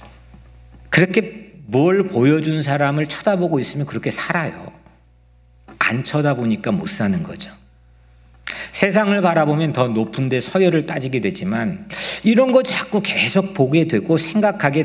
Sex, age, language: male, 50-69, Korean